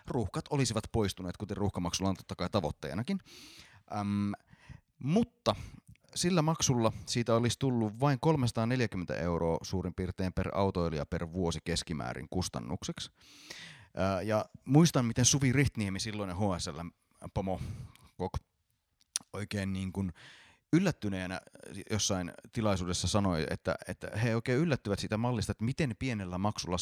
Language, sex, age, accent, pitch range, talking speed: Finnish, male, 30-49, native, 90-120 Hz, 125 wpm